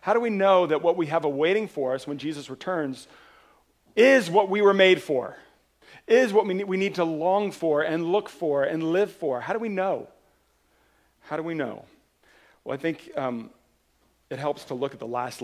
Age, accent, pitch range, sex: 40-59, American, 130-185 Hz, male